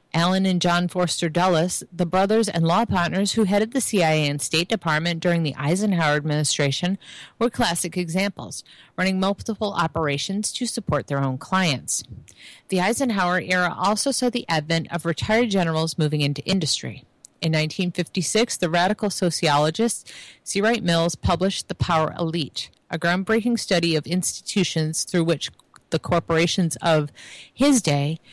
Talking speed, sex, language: 145 wpm, female, English